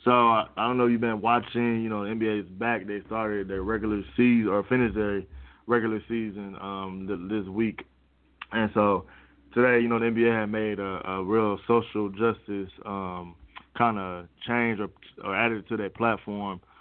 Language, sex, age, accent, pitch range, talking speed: English, male, 20-39, American, 95-110 Hz, 180 wpm